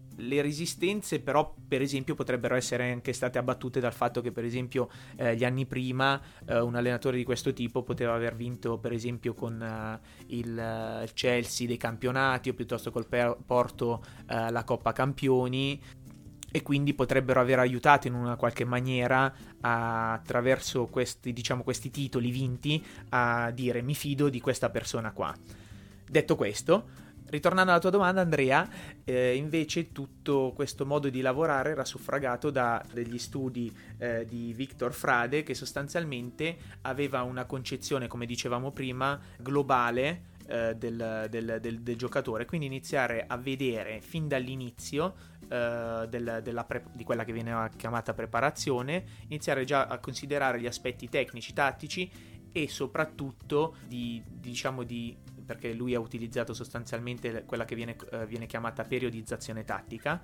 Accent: native